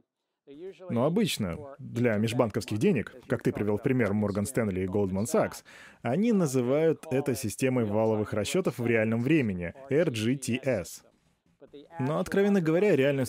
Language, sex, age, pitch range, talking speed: Russian, male, 20-39, 110-140 Hz, 130 wpm